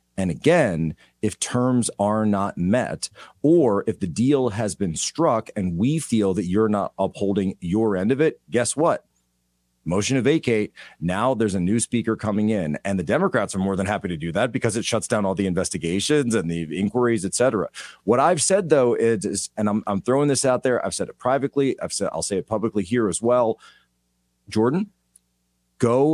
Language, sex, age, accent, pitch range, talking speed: English, male, 40-59, American, 90-115 Hz, 195 wpm